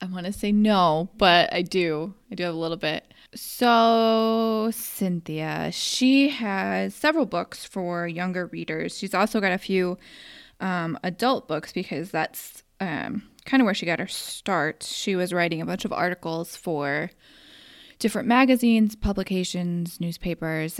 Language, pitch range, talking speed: English, 170-225 Hz, 155 wpm